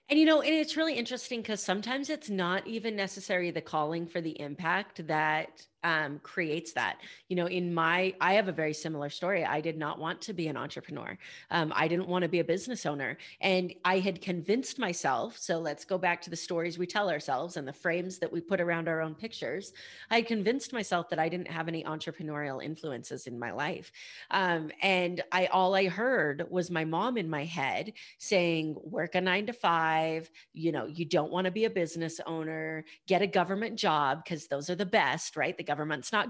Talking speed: 210 wpm